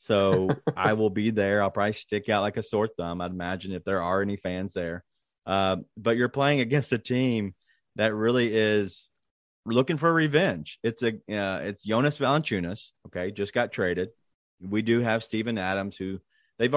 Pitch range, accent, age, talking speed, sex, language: 95-115 Hz, American, 30-49, 185 wpm, male, English